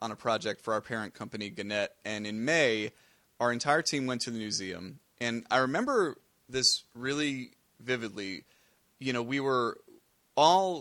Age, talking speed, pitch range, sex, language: 30-49, 160 wpm, 115-145 Hz, male, English